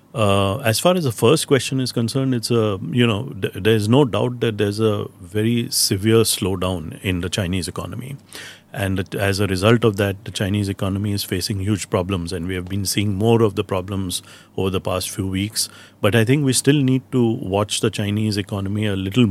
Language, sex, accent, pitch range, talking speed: English, male, Indian, 95-110 Hz, 210 wpm